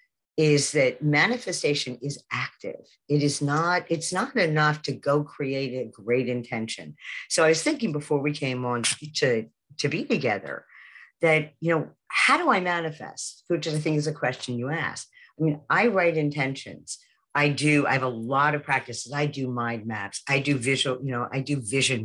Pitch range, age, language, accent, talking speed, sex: 135-165 Hz, 50-69, English, American, 190 wpm, female